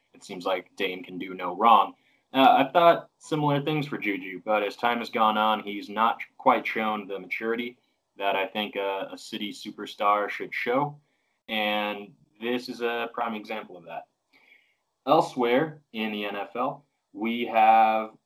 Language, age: English, 20-39